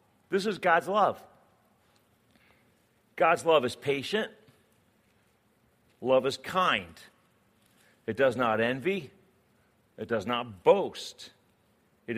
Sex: male